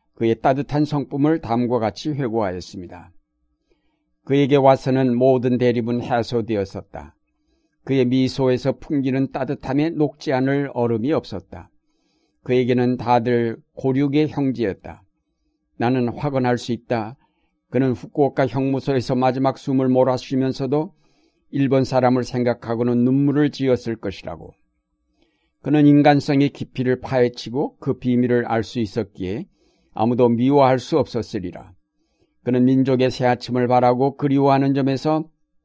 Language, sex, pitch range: Korean, male, 115-140 Hz